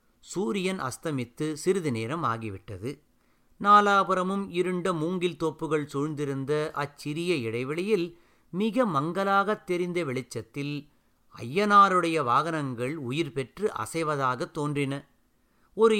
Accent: native